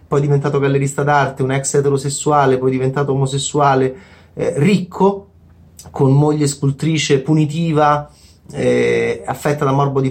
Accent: native